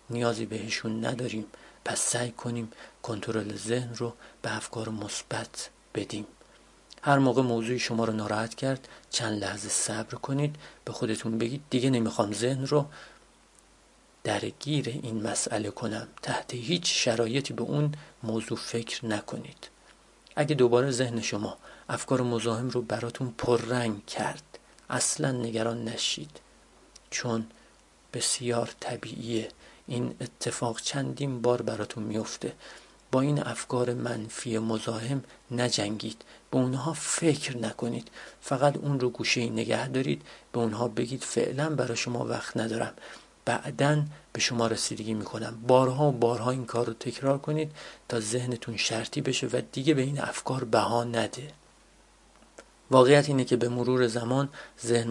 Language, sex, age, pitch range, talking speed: Persian, male, 40-59, 115-130 Hz, 135 wpm